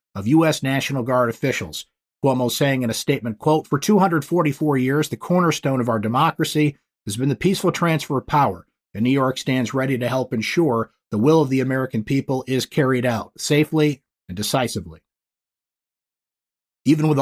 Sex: male